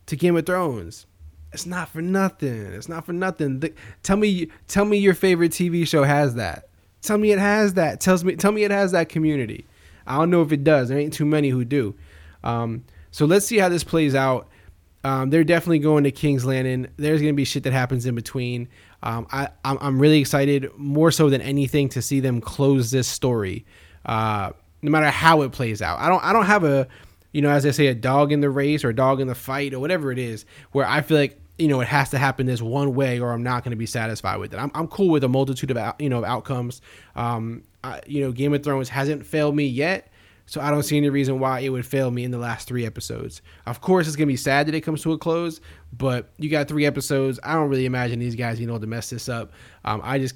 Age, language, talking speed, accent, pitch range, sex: 20-39, English, 255 wpm, American, 120-150 Hz, male